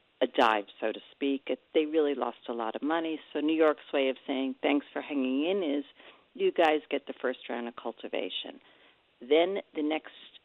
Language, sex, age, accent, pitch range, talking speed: English, female, 50-69, American, 135-170 Hz, 200 wpm